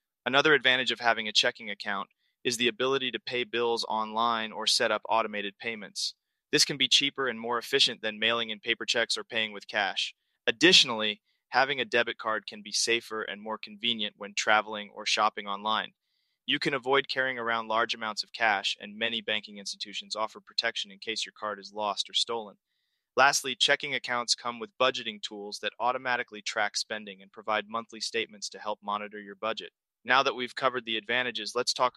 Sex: male